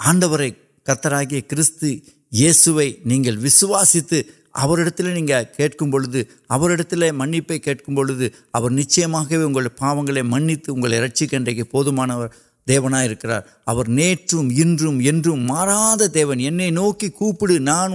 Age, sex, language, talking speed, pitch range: 60-79, male, Urdu, 65 wpm, 130-170 Hz